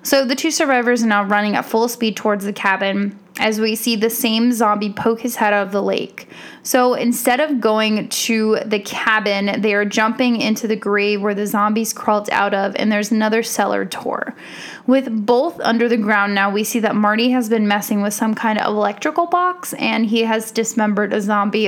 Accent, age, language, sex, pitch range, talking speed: American, 10-29, English, female, 210-245 Hz, 210 wpm